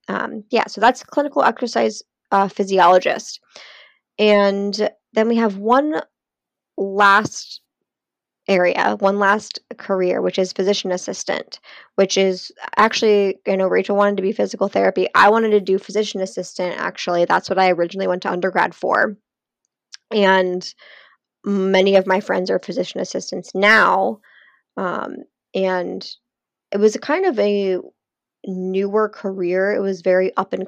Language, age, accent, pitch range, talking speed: English, 20-39, American, 185-205 Hz, 140 wpm